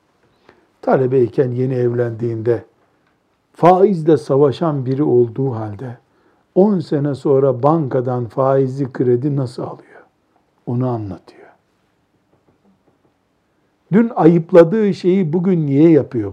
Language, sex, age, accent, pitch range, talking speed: Turkish, male, 60-79, native, 140-185 Hz, 90 wpm